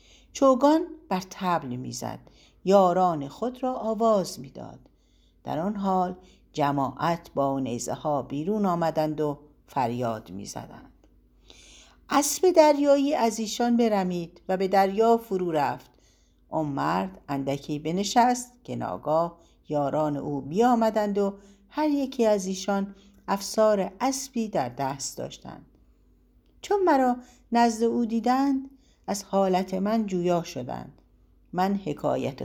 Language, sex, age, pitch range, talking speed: Persian, female, 60-79, 150-230 Hz, 115 wpm